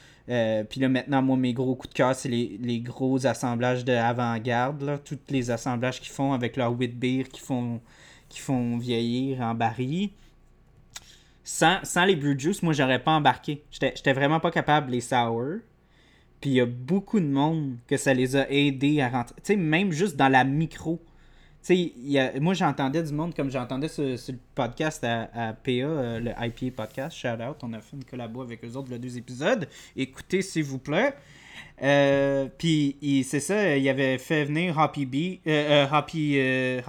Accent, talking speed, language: Canadian, 195 wpm, French